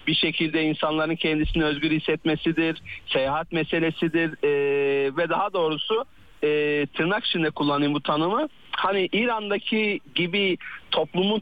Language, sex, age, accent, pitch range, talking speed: Turkish, male, 40-59, native, 150-205 Hz, 115 wpm